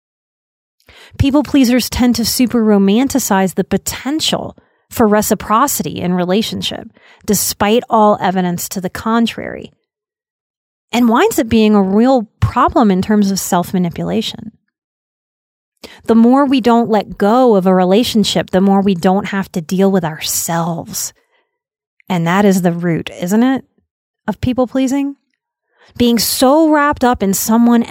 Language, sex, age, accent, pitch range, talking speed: English, female, 30-49, American, 185-240 Hz, 135 wpm